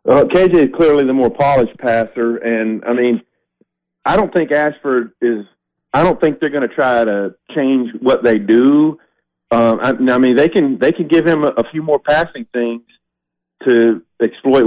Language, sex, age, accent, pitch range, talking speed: English, male, 40-59, American, 110-130 Hz, 185 wpm